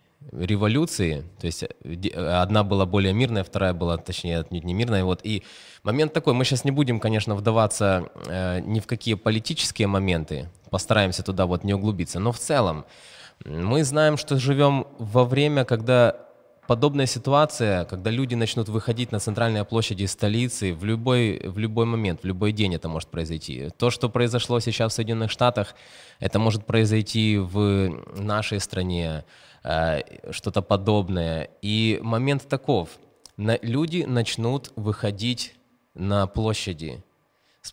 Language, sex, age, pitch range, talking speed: Russian, male, 20-39, 95-120 Hz, 140 wpm